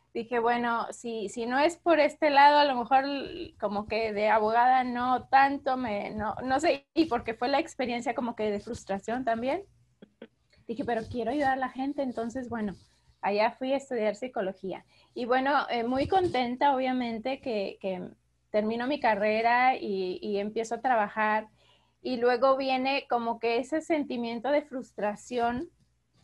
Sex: female